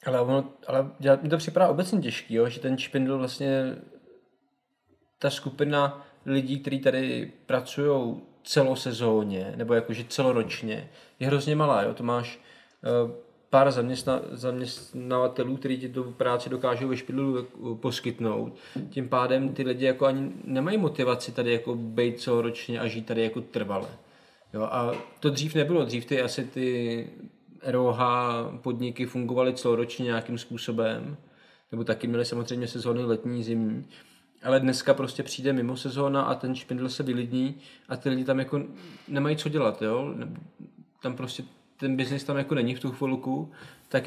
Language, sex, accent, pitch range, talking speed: Czech, male, native, 120-140 Hz, 150 wpm